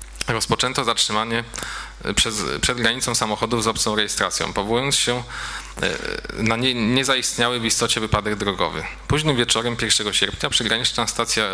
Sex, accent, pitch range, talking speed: male, native, 105-120 Hz, 130 wpm